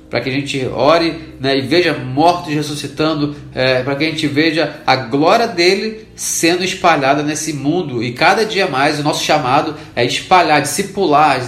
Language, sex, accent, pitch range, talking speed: Portuguese, male, Brazilian, 135-175 Hz, 175 wpm